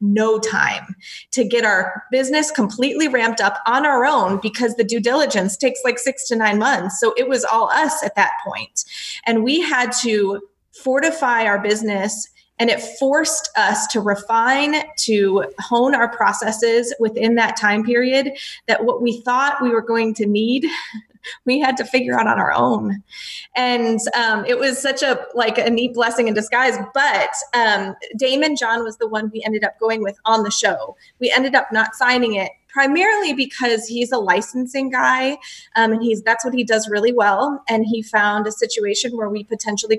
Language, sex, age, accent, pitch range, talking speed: English, female, 20-39, American, 215-255 Hz, 185 wpm